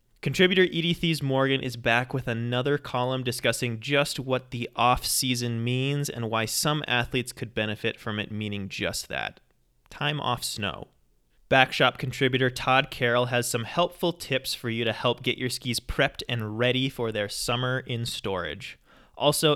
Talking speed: 160 wpm